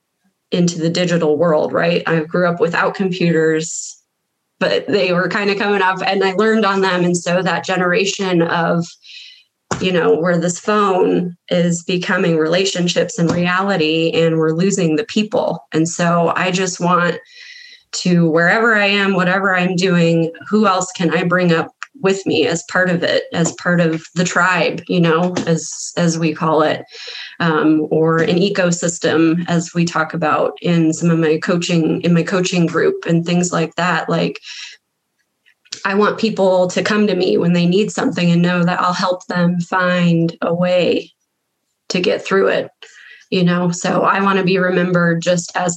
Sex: female